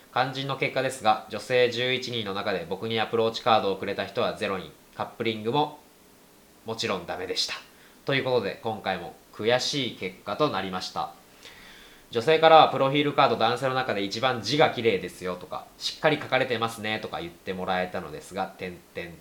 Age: 20-39